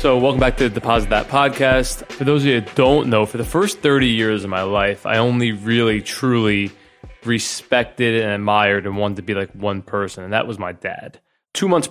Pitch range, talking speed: 105-130 Hz, 215 wpm